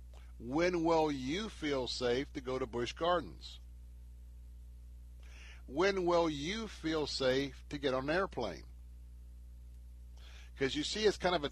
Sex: male